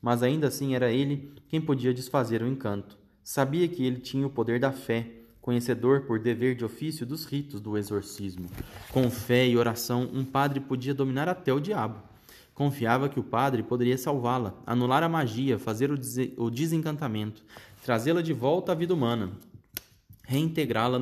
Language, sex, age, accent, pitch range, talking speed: Portuguese, male, 20-39, Brazilian, 110-140 Hz, 165 wpm